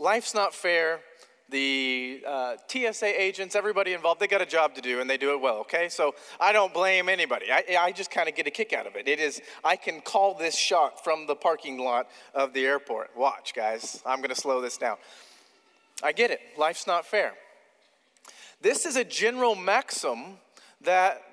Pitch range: 140-210 Hz